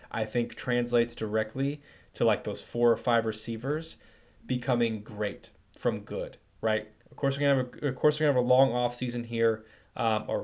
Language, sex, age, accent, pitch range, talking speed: English, male, 20-39, American, 110-135 Hz, 195 wpm